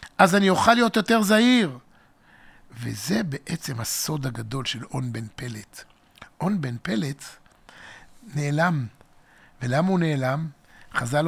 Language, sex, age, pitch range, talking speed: Hebrew, male, 60-79, 135-185 Hz, 115 wpm